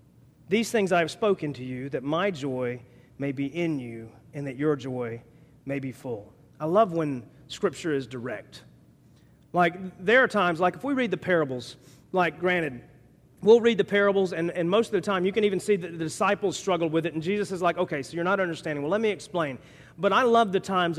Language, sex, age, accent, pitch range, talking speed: English, male, 40-59, American, 145-210 Hz, 220 wpm